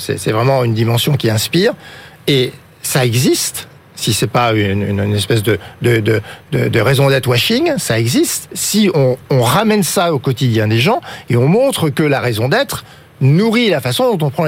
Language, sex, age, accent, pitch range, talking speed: French, male, 50-69, French, 120-165 Hz, 190 wpm